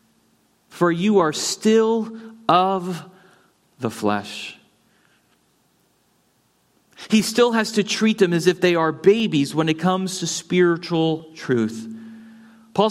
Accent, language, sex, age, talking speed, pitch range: American, English, male, 40-59, 115 wpm, 170-225 Hz